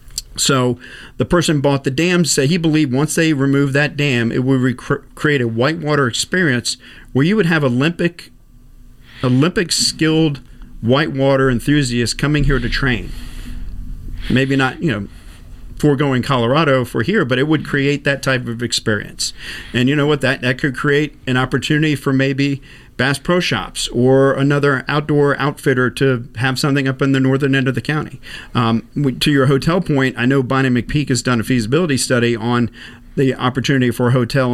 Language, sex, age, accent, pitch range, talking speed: English, male, 40-59, American, 120-145 Hz, 175 wpm